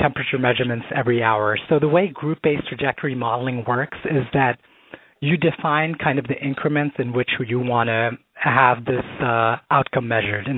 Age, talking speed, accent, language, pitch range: 30-49, 170 wpm, American, English, 125-160 Hz